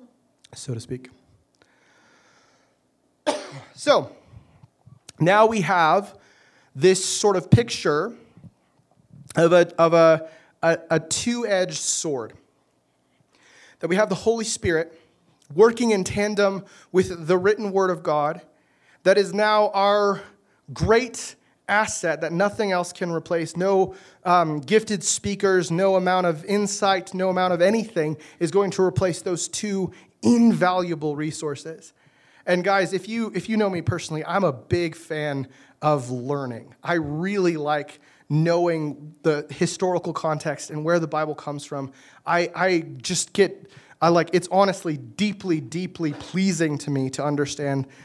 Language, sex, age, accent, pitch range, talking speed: English, male, 30-49, American, 150-190 Hz, 135 wpm